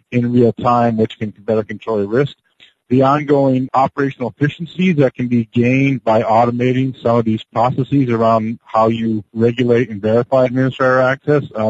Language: English